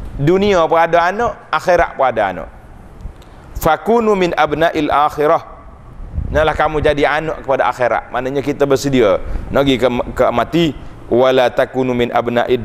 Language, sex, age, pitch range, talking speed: Malay, male, 30-49, 115-145 Hz, 140 wpm